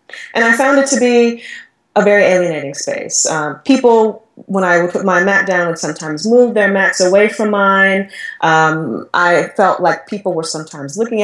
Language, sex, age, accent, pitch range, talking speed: English, female, 20-39, American, 180-225 Hz, 185 wpm